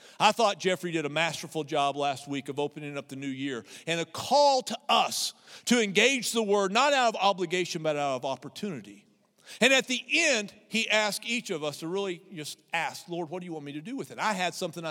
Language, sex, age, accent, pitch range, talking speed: English, male, 50-69, American, 165-235 Hz, 235 wpm